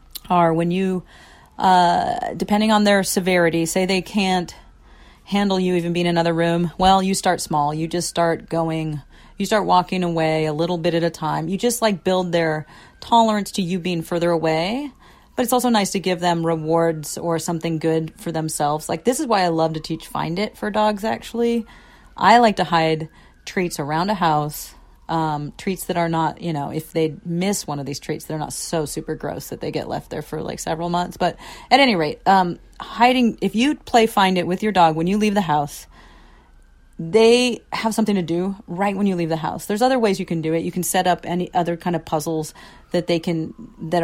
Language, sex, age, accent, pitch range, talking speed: English, female, 40-59, American, 160-195 Hz, 215 wpm